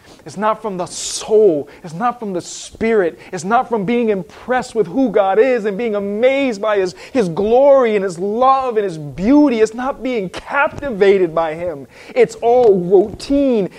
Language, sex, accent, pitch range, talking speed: English, male, American, 145-220 Hz, 180 wpm